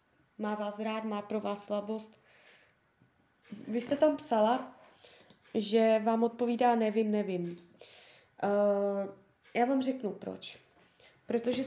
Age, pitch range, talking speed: 20-39, 195-235 Hz, 110 wpm